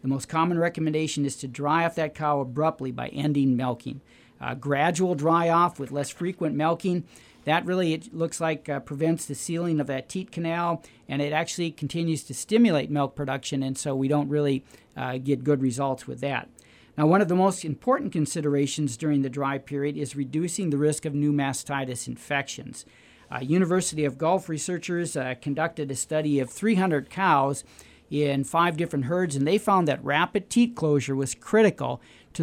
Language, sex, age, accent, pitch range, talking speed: English, male, 40-59, American, 140-170 Hz, 185 wpm